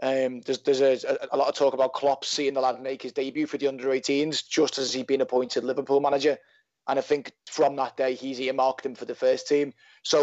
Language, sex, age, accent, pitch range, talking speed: English, male, 20-39, British, 130-145 Hz, 235 wpm